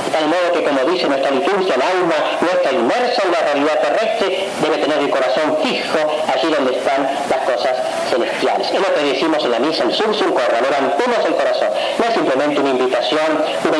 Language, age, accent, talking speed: Spanish, 40-59, Spanish, 195 wpm